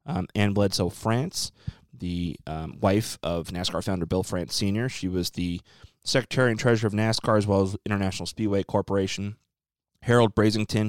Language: English